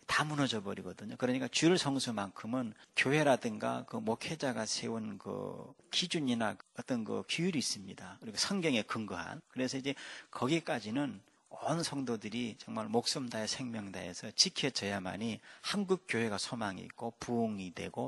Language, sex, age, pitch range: Korean, male, 40-59, 105-145 Hz